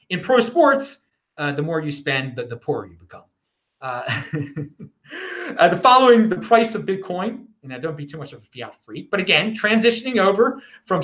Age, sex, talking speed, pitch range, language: 30-49, male, 195 wpm, 150-220 Hz, English